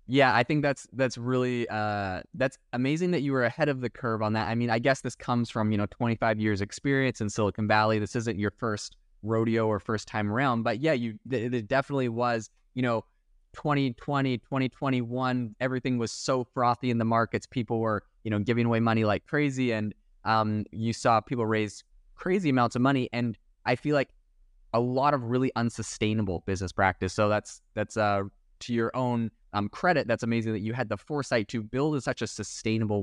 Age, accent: 20-39, American